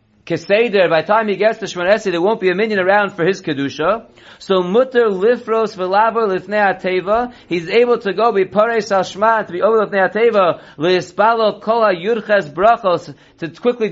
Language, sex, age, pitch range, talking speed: English, male, 40-59, 180-220 Hz, 165 wpm